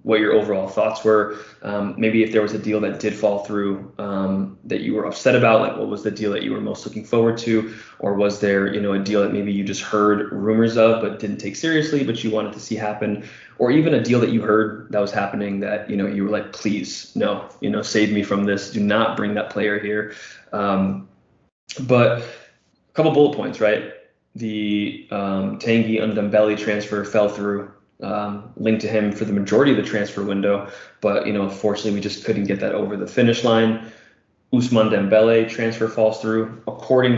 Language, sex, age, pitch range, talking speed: English, male, 20-39, 100-110 Hz, 215 wpm